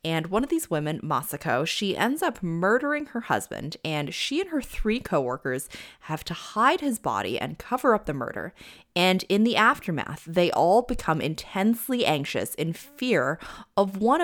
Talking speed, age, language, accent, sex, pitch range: 175 wpm, 20-39, English, American, female, 150-200 Hz